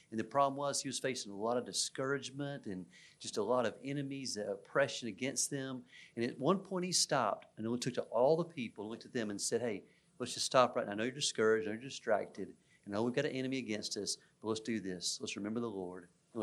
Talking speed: 260 wpm